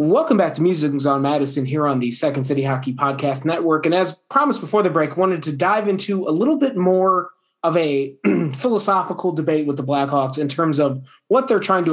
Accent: American